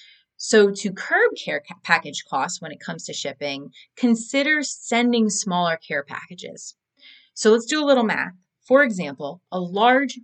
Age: 30-49